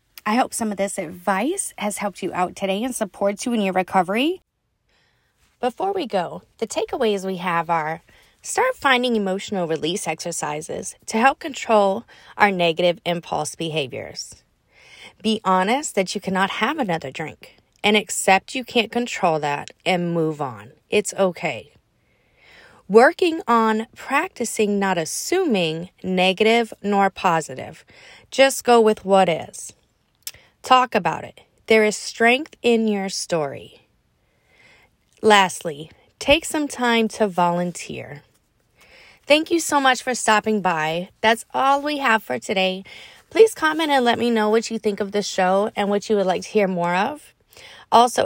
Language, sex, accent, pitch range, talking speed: English, female, American, 185-245 Hz, 150 wpm